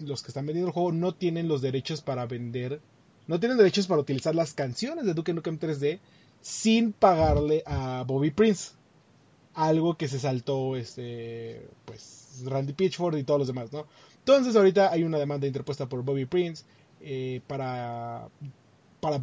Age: 20-39